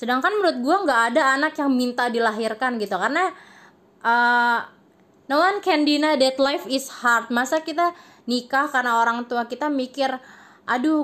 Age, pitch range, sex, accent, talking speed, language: 20-39, 235-300 Hz, female, native, 160 wpm, Indonesian